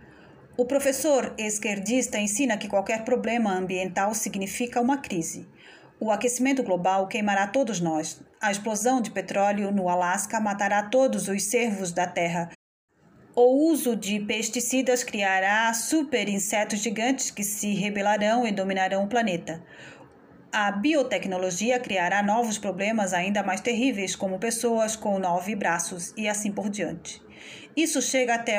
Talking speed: 130 wpm